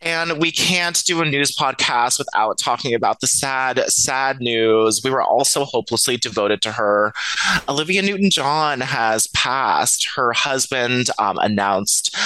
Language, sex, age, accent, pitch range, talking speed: English, male, 20-39, American, 110-135 Hz, 145 wpm